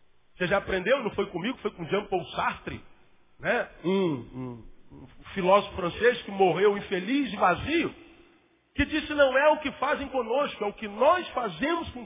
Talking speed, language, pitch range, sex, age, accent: 180 wpm, Portuguese, 195-280 Hz, male, 50-69, Brazilian